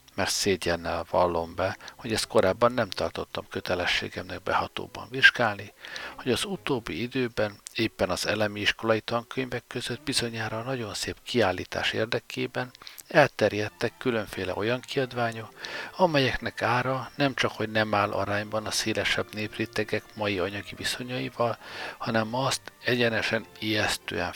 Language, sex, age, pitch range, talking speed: Hungarian, male, 60-79, 105-125 Hz, 120 wpm